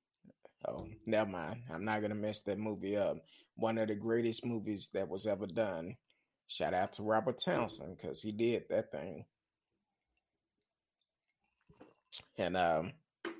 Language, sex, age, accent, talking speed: English, male, 30-49, American, 140 wpm